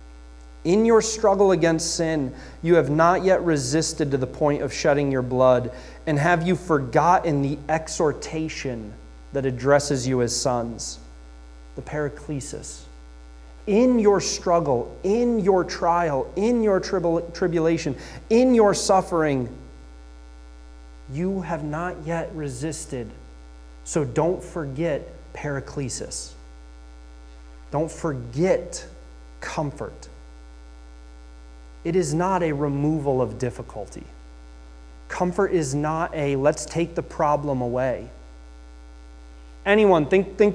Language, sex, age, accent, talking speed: English, male, 30-49, American, 110 wpm